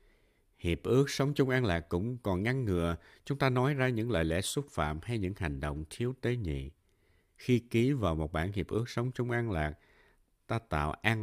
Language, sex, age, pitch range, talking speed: Vietnamese, male, 60-79, 85-115 Hz, 215 wpm